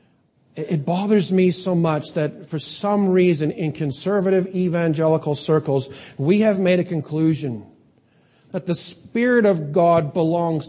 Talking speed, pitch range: 135 wpm, 140-175 Hz